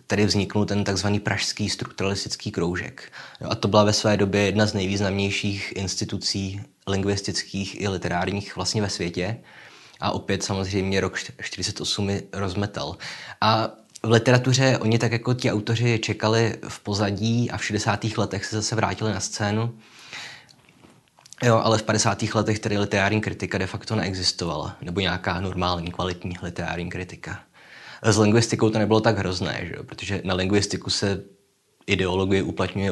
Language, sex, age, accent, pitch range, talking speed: Czech, male, 20-39, native, 95-110 Hz, 145 wpm